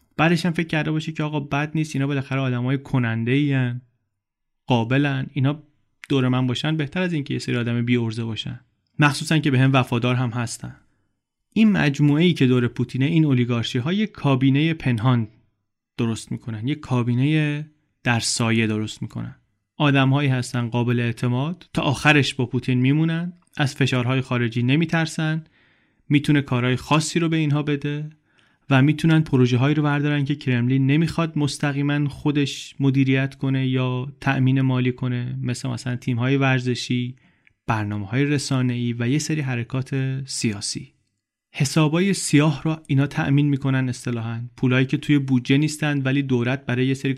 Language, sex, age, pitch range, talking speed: Persian, male, 30-49, 125-145 Hz, 155 wpm